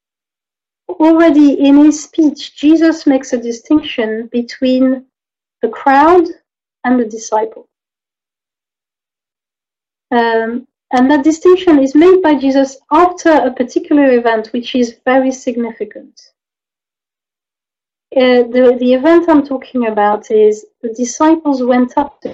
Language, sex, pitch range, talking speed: English, female, 235-295 Hz, 115 wpm